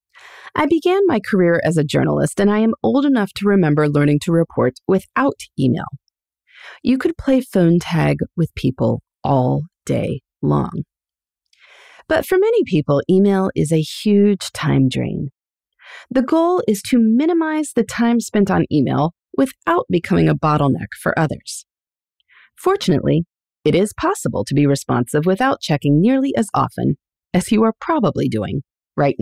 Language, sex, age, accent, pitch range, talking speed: English, female, 30-49, American, 140-230 Hz, 150 wpm